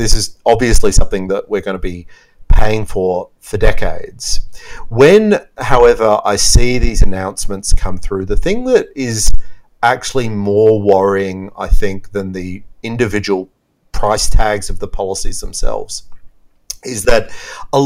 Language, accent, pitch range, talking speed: English, Australian, 90-110 Hz, 140 wpm